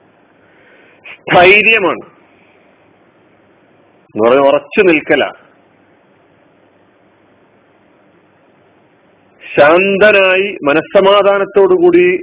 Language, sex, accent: Malayalam, male, native